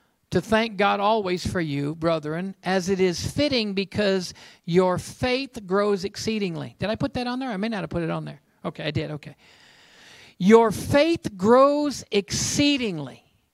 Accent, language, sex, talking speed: American, English, male, 170 wpm